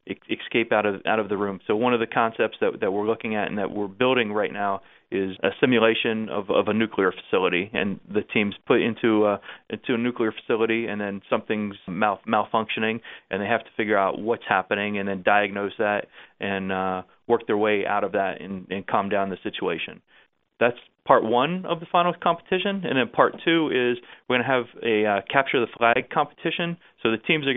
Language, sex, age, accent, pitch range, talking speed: English, male, 30-49, American, 100-120 Hz, 215 wpm